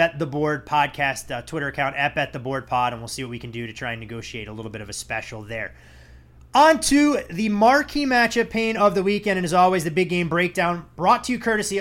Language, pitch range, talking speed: English, 135-175 Hz, 235 wpm